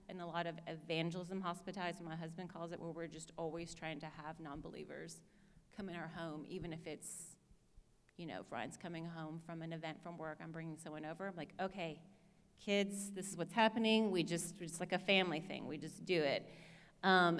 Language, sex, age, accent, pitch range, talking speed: English, female, 30-49, American, 165-195 Hz, 205 wpm